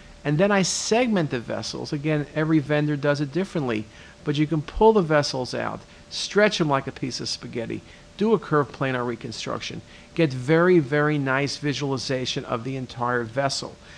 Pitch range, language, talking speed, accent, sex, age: 125-155 Hz, English, 170 wpm, American, male, 50-69